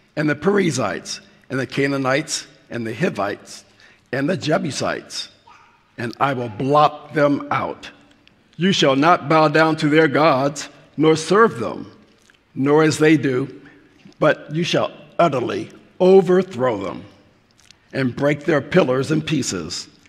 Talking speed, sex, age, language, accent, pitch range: 135 wpm, male, 50-69, English, American, 135-170 Hz